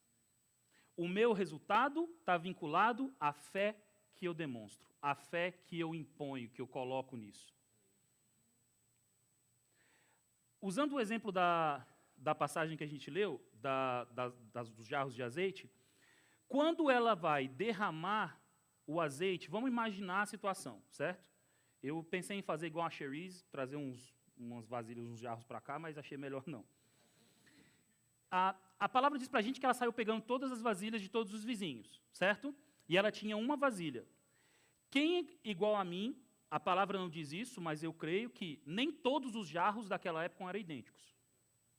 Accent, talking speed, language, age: Brazilian, 155 wpm, Portuguese, 40-59